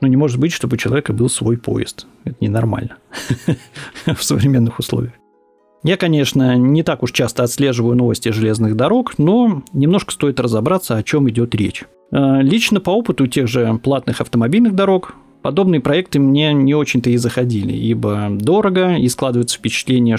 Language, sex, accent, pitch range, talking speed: Russian, male, native, 115-155 Hz, 160 wpm